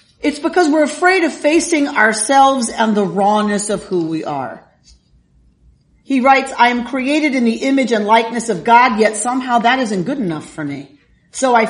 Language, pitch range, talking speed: English, 185-255 Hz, 185 wpm